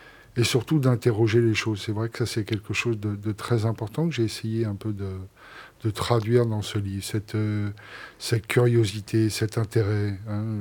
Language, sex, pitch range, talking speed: French, male, 100-115 Hz, 190 wpm